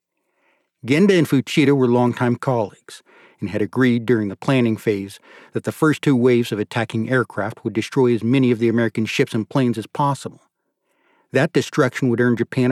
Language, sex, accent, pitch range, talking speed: English, male, American, 110-130 Hz, 180 wpm